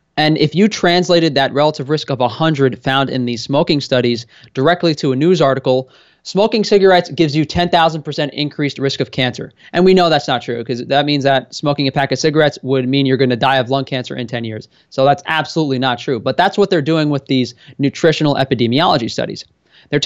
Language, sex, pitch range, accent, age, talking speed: English, male, 130-155 Hz, American, 20-39, 210 wpm